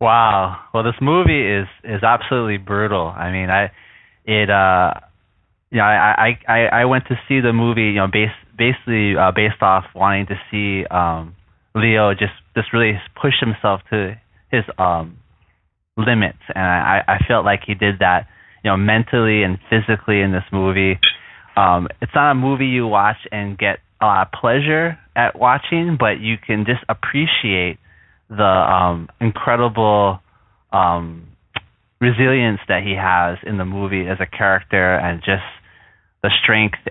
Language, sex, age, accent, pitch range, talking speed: English, male, 20-39, American, 95-115 Hz, 160 wpm